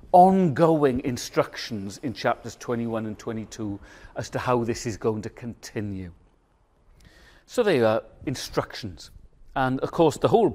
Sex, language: male, English